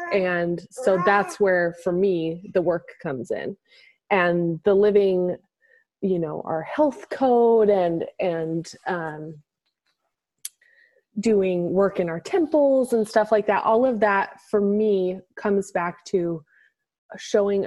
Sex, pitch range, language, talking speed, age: female, 175-210 Hz, English, 130 wpm, 20-39